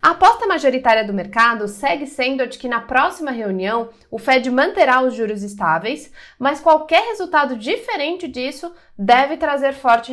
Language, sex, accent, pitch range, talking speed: Portuguese, female, Brazilian, 235-315 Hz, 160 wpm